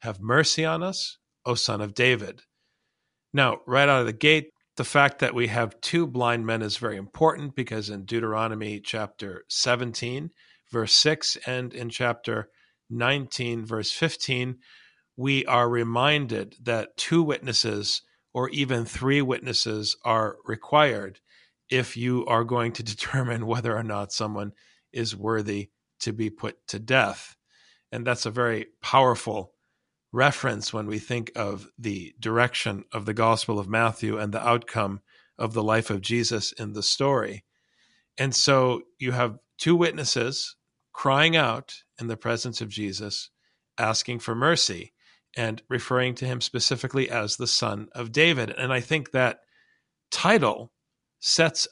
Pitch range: 110-130 Hz